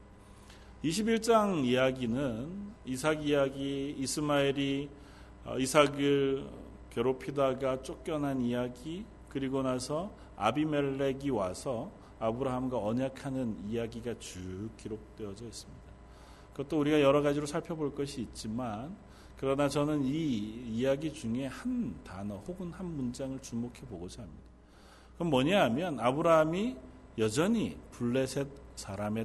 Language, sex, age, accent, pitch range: Korean, male, 40-59, native, 115-160 Hz